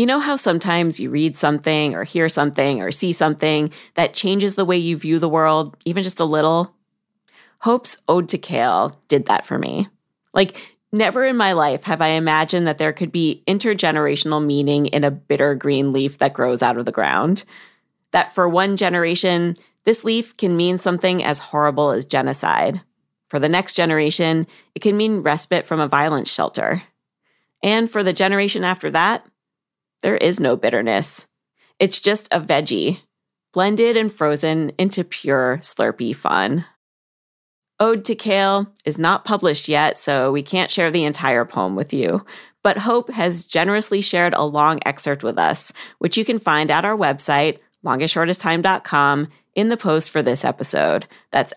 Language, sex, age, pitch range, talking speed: English, female, 30-49, 150-200 Hz, 170 wpm